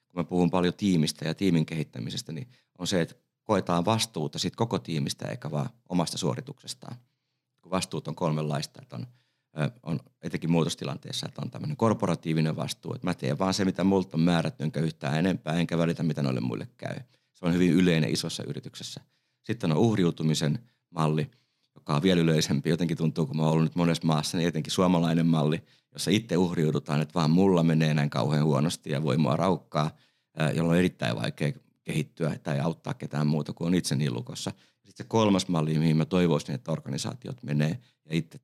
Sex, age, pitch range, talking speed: male, 30-49, 75-90 Hz, 180 wpm